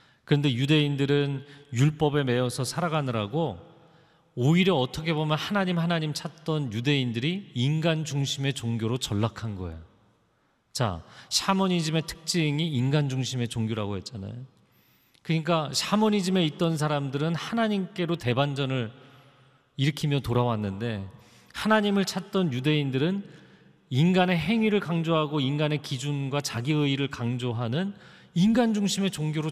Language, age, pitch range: Korean, 40-59, 125-180 Hz